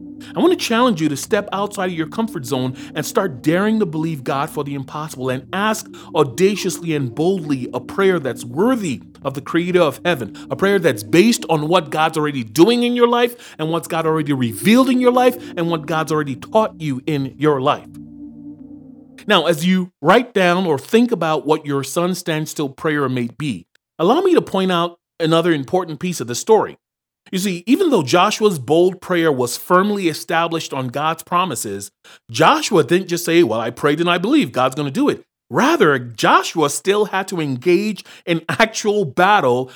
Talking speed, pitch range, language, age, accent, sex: 190 wpm, 145-195 Hz, English, 30-49, American, male